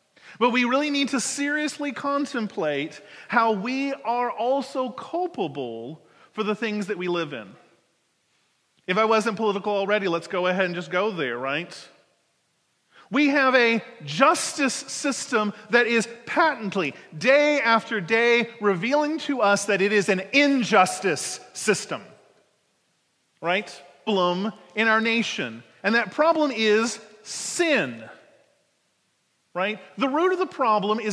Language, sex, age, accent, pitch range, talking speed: English, male, 30-49, American, 190-260 Hz, 135 wpm